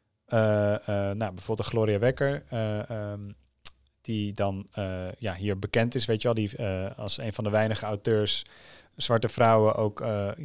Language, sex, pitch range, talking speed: Dutch, male, 105-125 Hz, 180 wpm